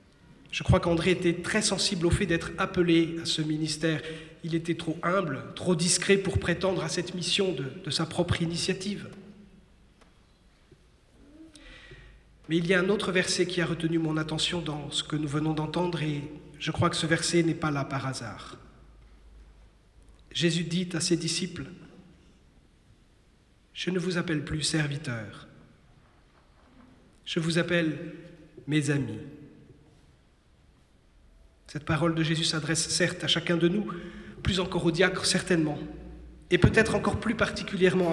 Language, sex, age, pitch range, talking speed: French, male, 40-59, 155-185 Hz, 150 wpm